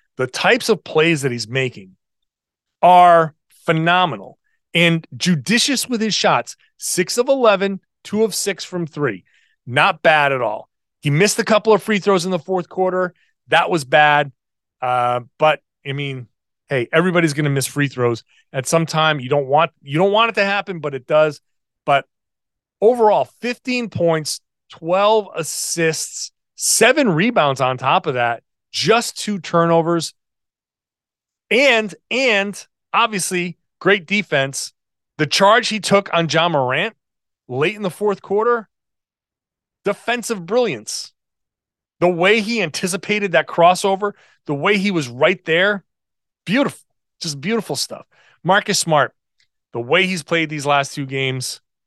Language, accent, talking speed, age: English, American, 145 wpm, 30-49